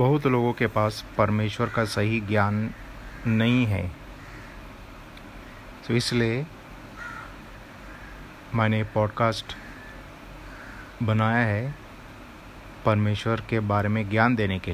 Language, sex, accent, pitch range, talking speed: Hindi, male, native, 105-120 Hz, 95 wpm